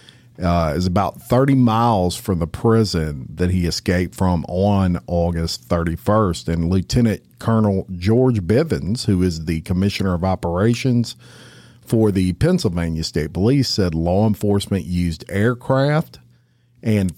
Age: 50-69